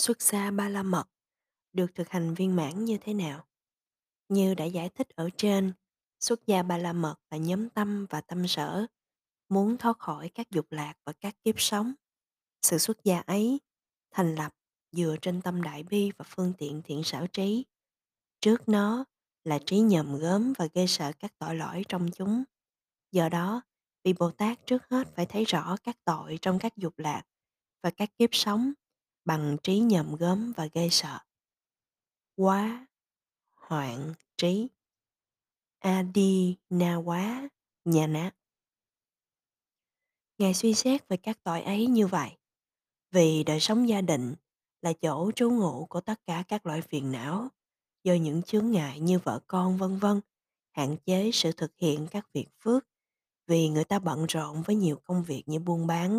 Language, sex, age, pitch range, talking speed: Vietnamese, female, 20-39, 160-210 Hz, 170 wpm